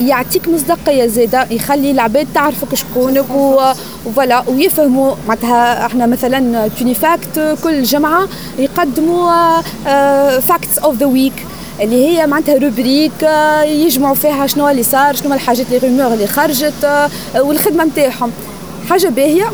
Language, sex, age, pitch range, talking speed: Arabic, female, 20-39, 240-315 Hz, 130 wpm